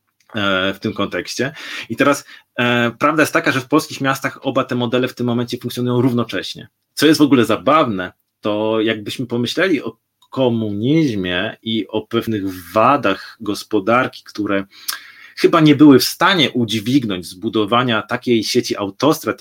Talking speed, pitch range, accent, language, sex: 140 wpm, 115-155 Hz, native, Polish, male